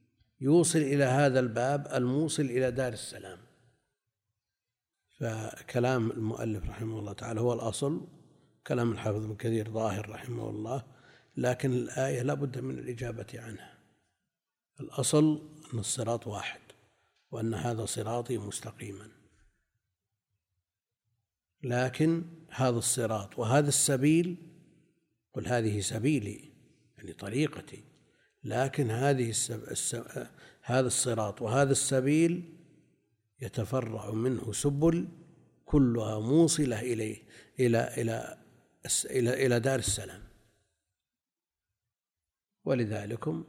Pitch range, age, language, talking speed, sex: 110-140 Hz, 50-69, Arabic, 90 wpm, male